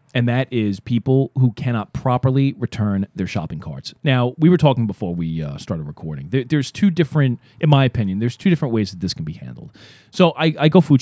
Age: 40-59